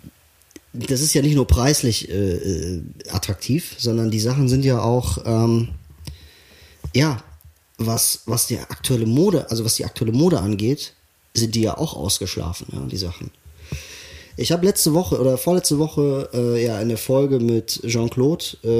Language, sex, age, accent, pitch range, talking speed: German, male, 30-49, German, 100-130 Hz, 155 wpm